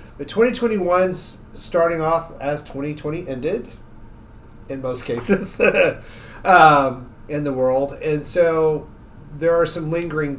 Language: English